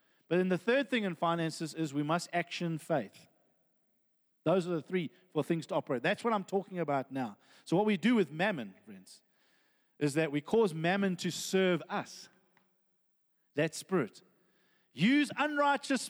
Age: 40-59